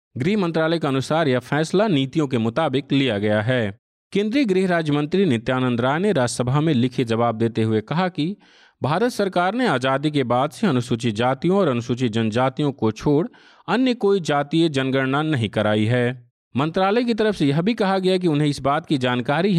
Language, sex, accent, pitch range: Hindi, male, native, 130-170 Hz